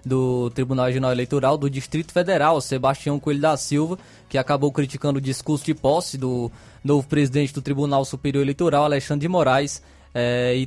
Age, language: 20-39, Portuguese